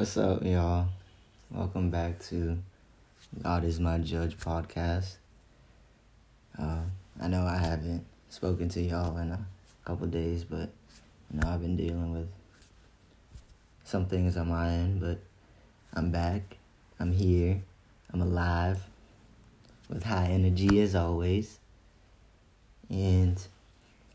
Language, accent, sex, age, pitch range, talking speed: English, American, male, 20-39, 85-100 Hz, 120 wpm